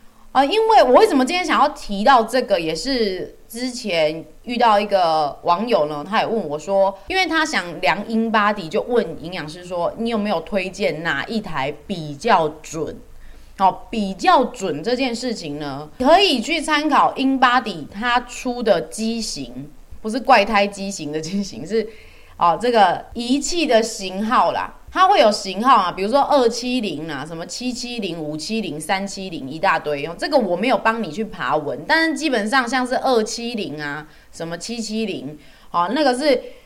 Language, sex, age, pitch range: Chinese, female, 20-39, 175-255 Hz